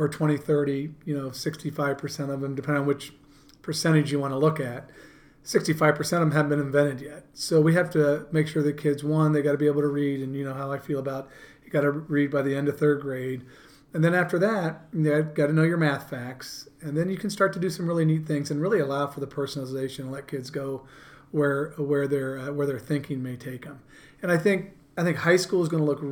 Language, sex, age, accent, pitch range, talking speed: English, male, 40-59, American, 140-155 Hz, 260 wpm